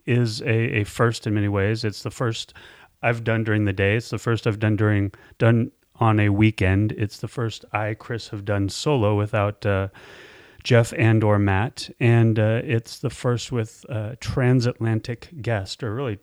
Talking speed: 185 wpm